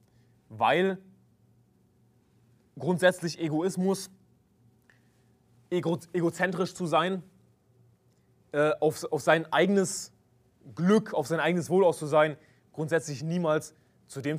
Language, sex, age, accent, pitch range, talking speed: German, male, 20-39, German, 125-180 Hz, 95 wpm